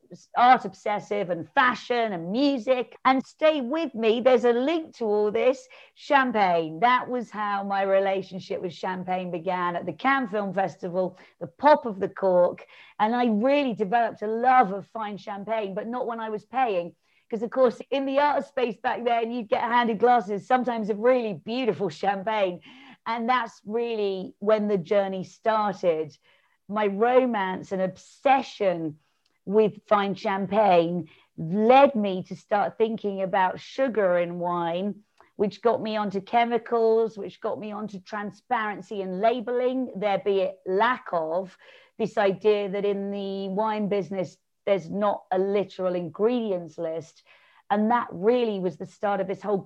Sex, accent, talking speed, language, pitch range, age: female, British, 155 wpm, English, 190-230 Hz, 40-59